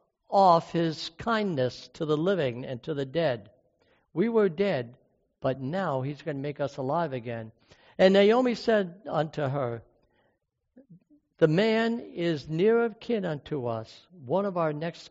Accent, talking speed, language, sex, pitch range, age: American, 155 wpm, English, male, 135-200 Hz, 60-79